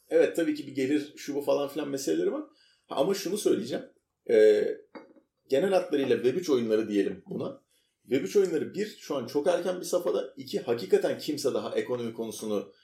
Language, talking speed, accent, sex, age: Turkish, 175 wpm, native, male, 40-59